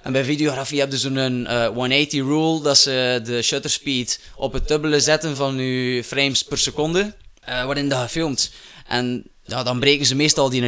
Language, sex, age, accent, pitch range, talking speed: Dutch, male, 20-39, Dutch, 120-145 Hz, 175 wpm